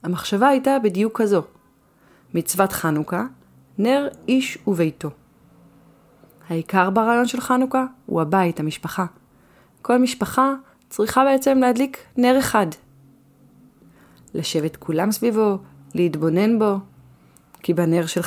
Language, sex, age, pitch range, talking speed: Hebrew, female, 30-49, 160-215 Hz, 100 wpm